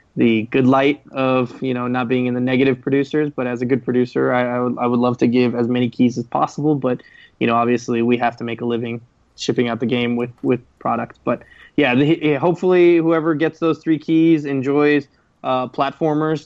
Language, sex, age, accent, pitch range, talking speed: English, male, 20-39, American, 125-140 Hz, 215 wpm